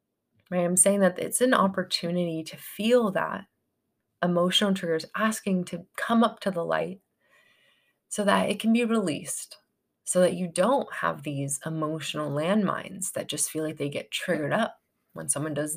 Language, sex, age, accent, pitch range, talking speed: English, female, 20-39, American, 165-230 Hz, 170 wpm